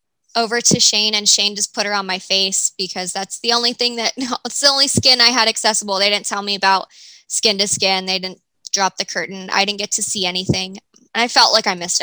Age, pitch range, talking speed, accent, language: 10-29, 195-245 Hz, 245 wpm, American, English